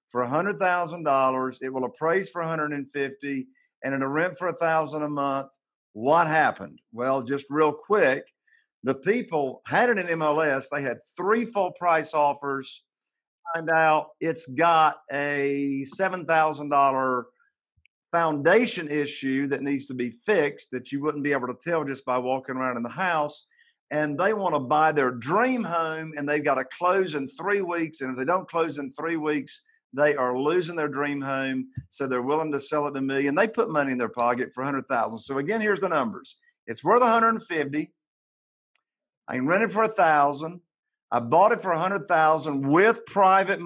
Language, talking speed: English, 185 wpm